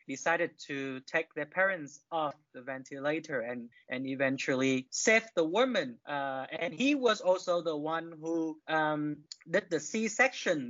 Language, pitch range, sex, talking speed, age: English, 145-190 Hz, male, 145 wpm, 20-39